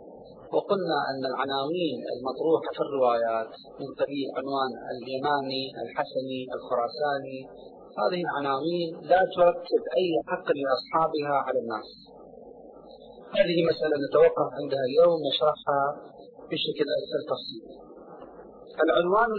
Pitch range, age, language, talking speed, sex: 145-200 Hz, 40-59, Arabic, 95 wpm, male